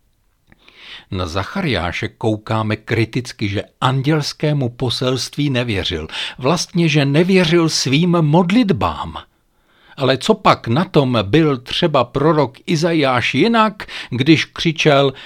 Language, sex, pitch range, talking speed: Czech, male, 125-175 Hz, 100 wpm